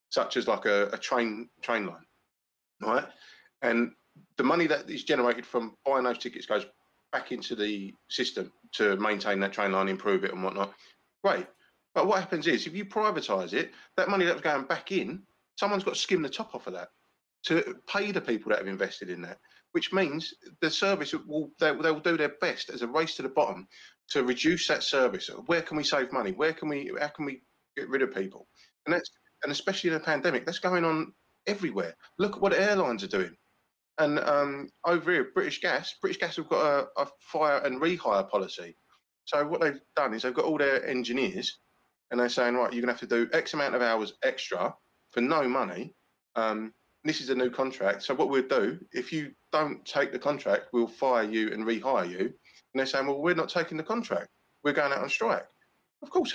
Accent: British